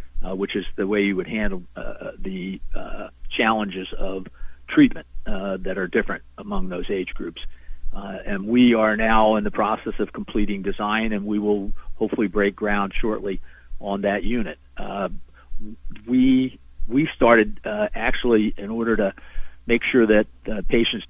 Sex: male